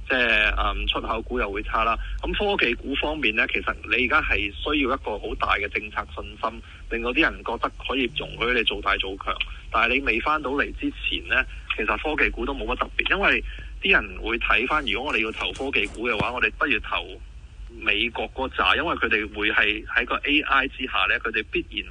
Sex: male